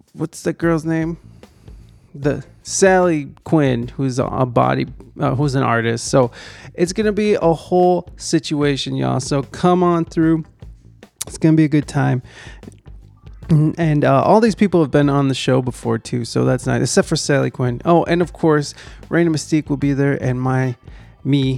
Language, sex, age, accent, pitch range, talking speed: English, male, 30-49, American, 135-175 Hz, 180 wpm